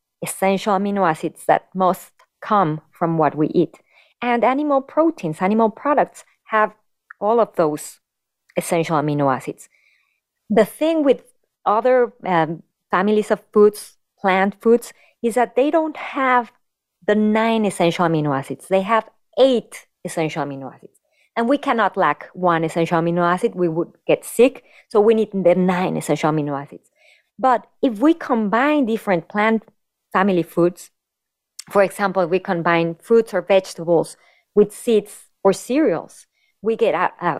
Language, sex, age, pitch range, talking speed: English, female, 30-49, 175-235 Hz, 145 wpm